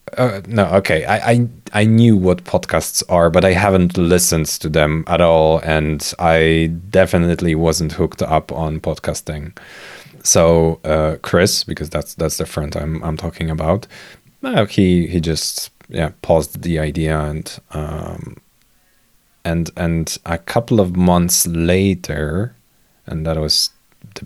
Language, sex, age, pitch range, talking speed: English, male, 30-49, 80-90 Hz, 145 wpm